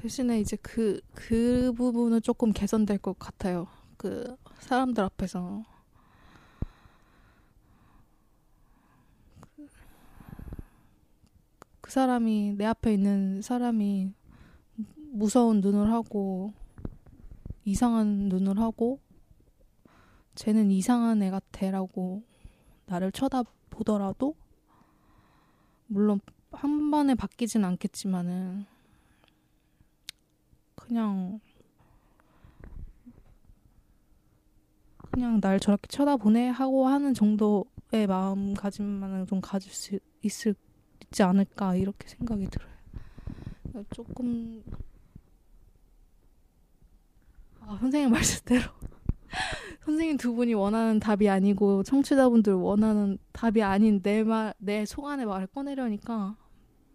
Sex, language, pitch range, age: female, Korean, 200-240 Hz, 20-39